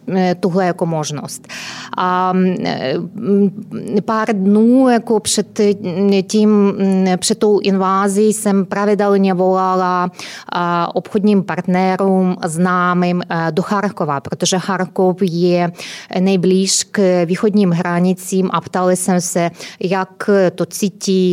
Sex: female